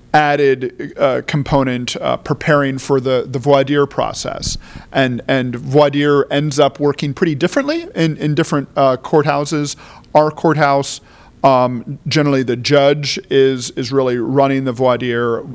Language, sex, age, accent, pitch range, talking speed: English, male, 40-59, American, 125-145 Hz, 145 wpm